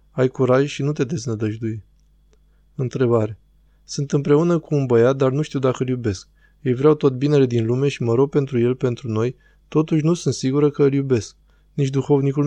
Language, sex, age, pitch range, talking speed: Romanian, male, 20-39, 120-150 Hz, 190 wpm